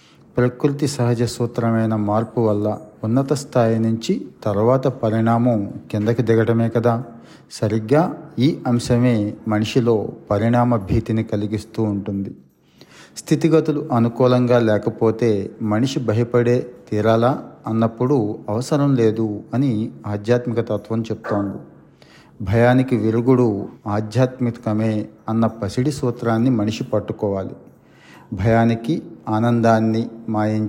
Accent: native